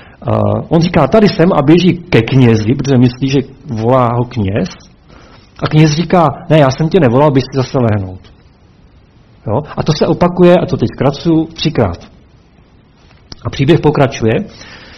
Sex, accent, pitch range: male, native, 110-150 Hz